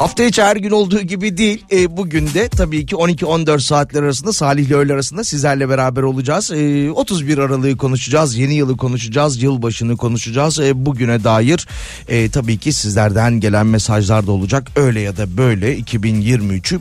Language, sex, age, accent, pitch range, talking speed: Turkish, male, 40-59, native, 110-160 Hz, 165 wpm